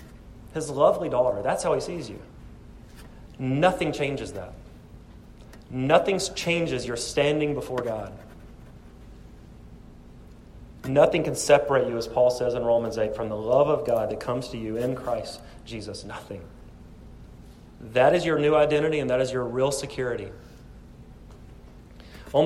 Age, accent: 30-49, American